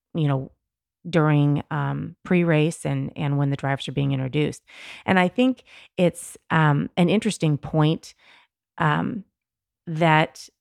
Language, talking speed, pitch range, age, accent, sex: English, 130 wpm, 140-170 Hz, 30-49, American, female